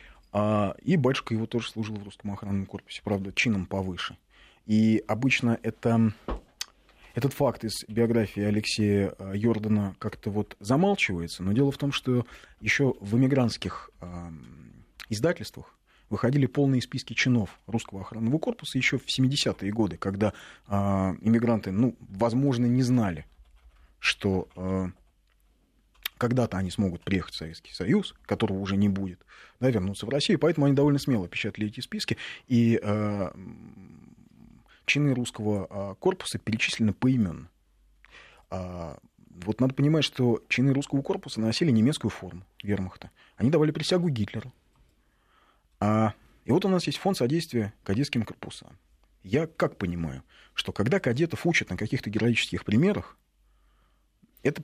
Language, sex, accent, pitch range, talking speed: Russian, male, native, 95-130 Hz, 130 wpm